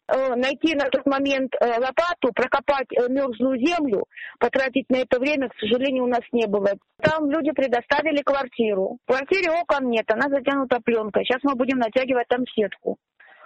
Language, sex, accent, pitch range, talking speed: Russian, female, native, 240-290 Hz, 155 wpm